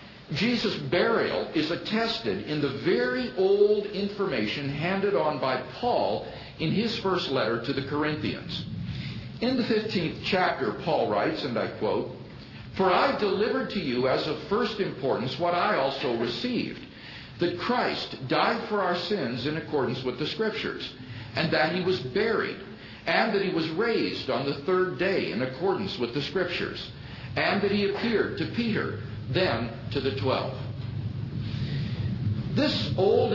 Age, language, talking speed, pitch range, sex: 60-79, English, 150 wpm, 135-200 Hz, male